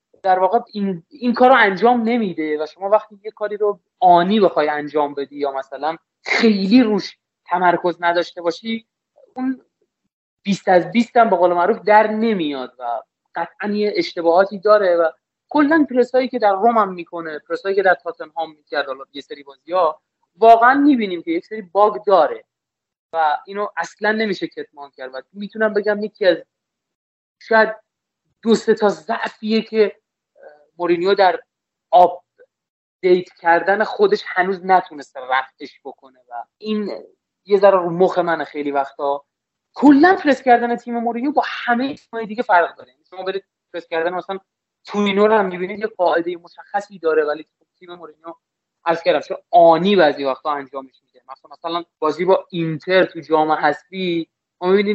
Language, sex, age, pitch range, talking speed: Persian, male, 30-49, 165-215 Hz, 150 wpm